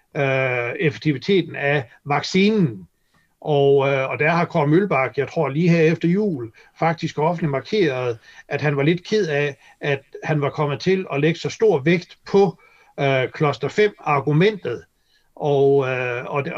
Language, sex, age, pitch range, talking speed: Danish, male, 60-79, 140-175 Hz, 160 wpm